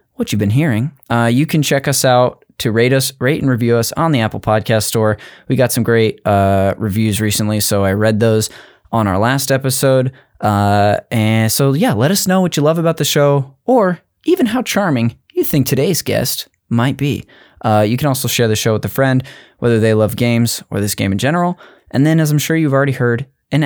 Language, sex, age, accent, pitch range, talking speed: English, male, 10-29, American, 105-140 Hz, 225 wpm